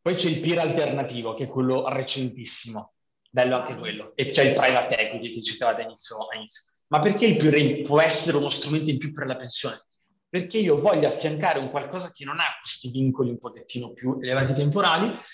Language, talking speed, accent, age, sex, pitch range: Italian, 195 wpm, native, 30-49, male, 130-175 Hz